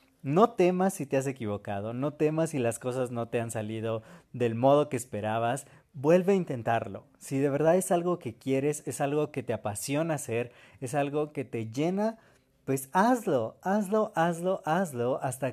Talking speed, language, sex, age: 180 wpm, Spanish, male, 30-49